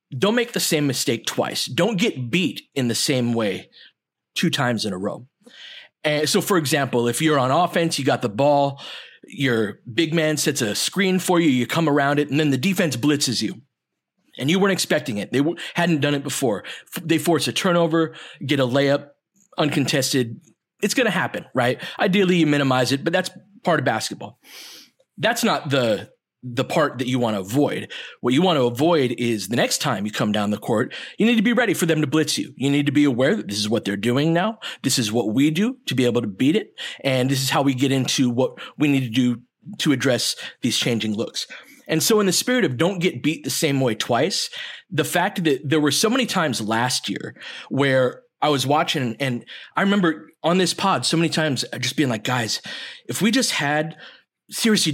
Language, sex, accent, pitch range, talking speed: English, male, American, 130-170 Hz, 215 wpm